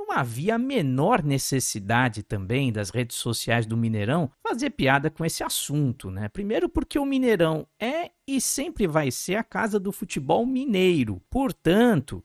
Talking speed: 150 wpm